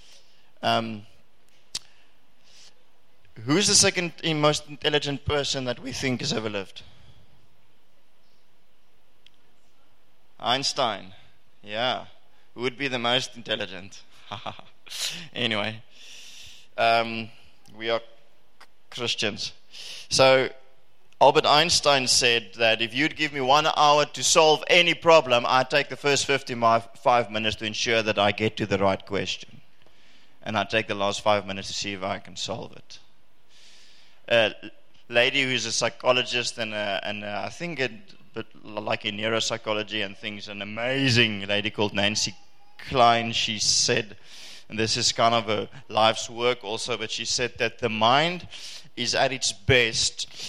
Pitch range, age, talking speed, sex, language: 110-130 Hz, 20-39, 140 wpm, male, English